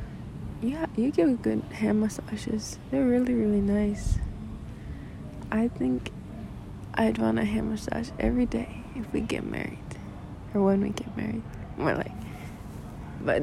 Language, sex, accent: English, female, American